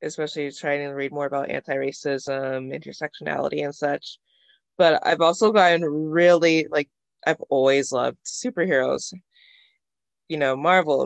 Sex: female